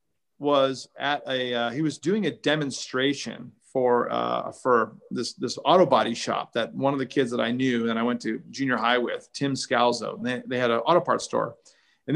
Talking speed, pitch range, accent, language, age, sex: 210 wpm, 120-165 Hz, American, English, 40-59, male